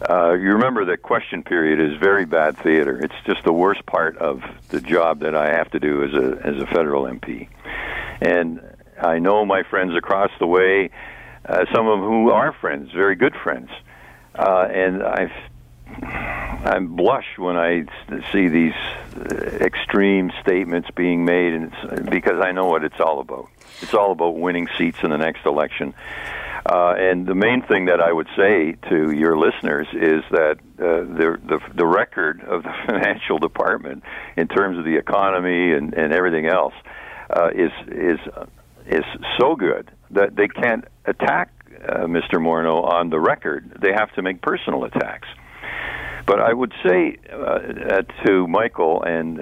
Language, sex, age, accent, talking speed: English, male, 60-79, American, 170 wpm